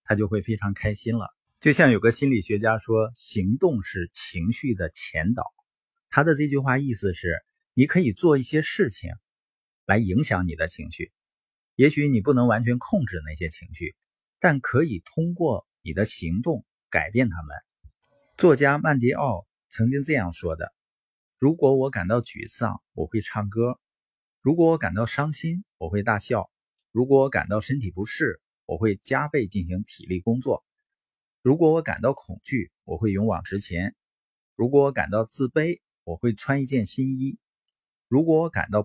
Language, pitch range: Chinese, 100-140 Hz